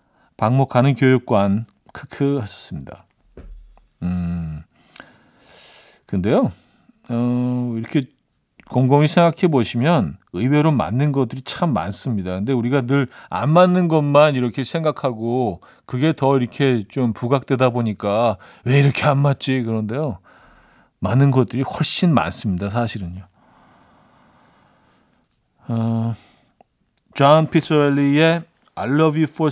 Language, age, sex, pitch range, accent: Korean, 40-59, male, 110-155 Hz, native